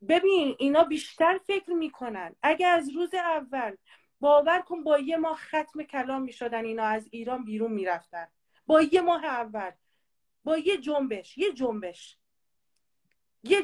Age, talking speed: 40-59, 140 wpm